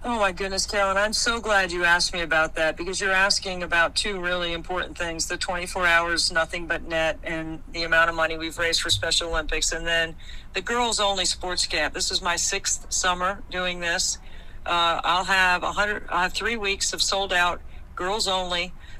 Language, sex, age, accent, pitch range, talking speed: English, female, 50-69, American, 165-200 Hz, 190 wpm